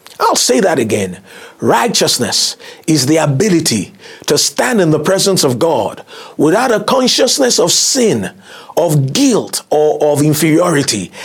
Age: 50-69